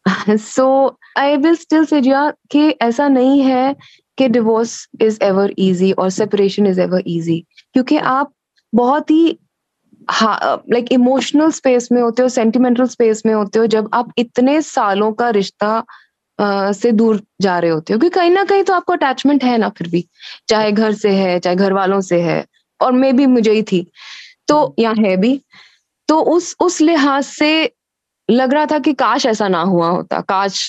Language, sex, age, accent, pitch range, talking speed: Hindi, female, 20-39, native, 195-270 Hz, 160 wpm